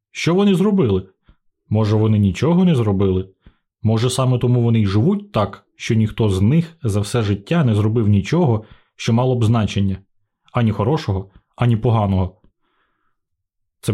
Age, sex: 20-39, male